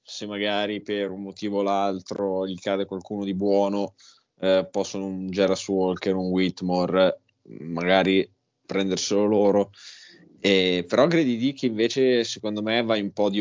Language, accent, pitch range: Italian, native, 90-100 Hz